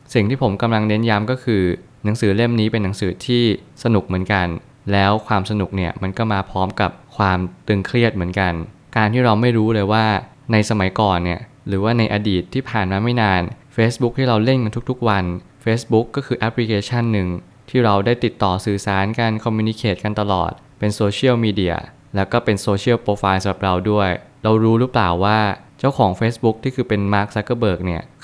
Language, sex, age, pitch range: Thai, male, 20-39, 95-120 Hz